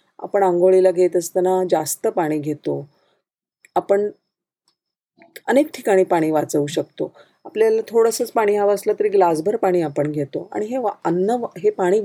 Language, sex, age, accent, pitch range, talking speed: Marathi, female, 30-49, native, 170-225 Hz, 135 wpm